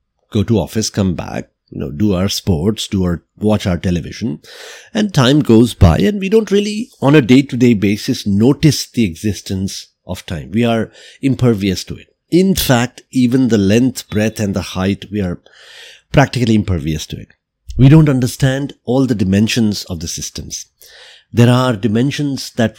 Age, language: 50-69, English